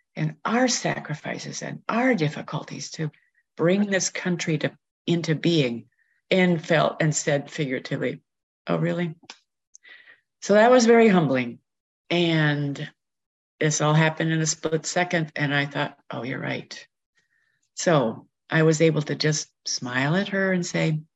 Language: English